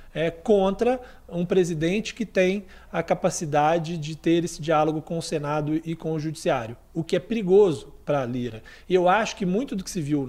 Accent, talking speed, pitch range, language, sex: Brazilian, 205 wpm, 160-210 Hz, Portuguese, male